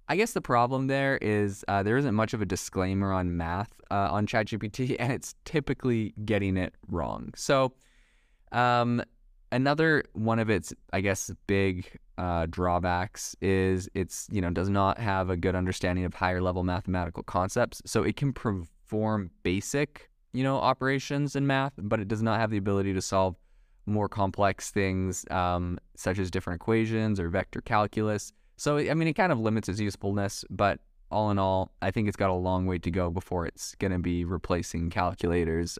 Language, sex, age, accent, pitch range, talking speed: English, male, 20-39, American, 90-115 Hz, 185 wpm